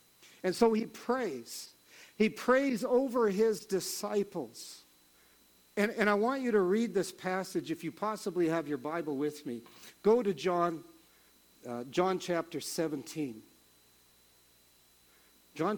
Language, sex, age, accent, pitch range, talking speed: English, male, 50-69, American, 140-215 Hz, 130 wpm